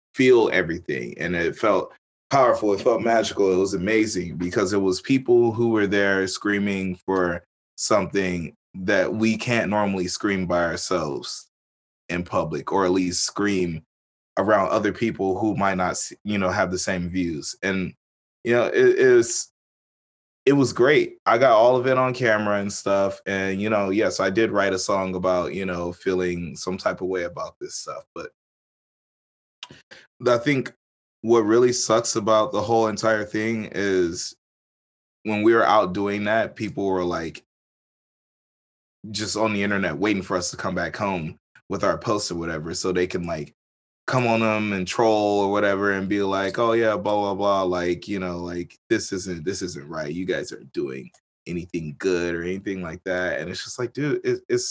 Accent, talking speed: American, 185 wpm